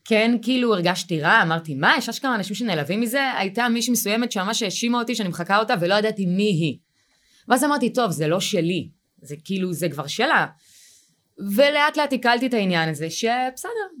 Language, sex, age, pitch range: Hebrew, female, 20-39, 150-220 Hz